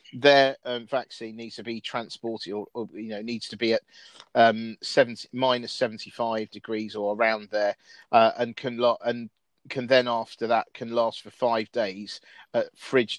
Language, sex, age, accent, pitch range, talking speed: English, male, 40-59, British, 110-125 Hz, 180 wpm